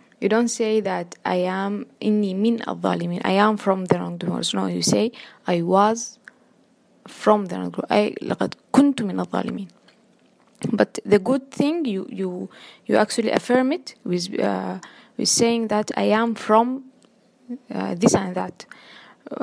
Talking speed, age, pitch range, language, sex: 150 wpm, 20-39, 195-240 Hz, English, female